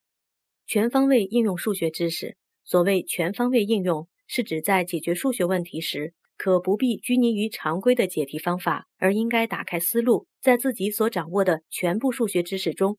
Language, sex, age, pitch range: Chinese, female, 30-49, 175-235 Hz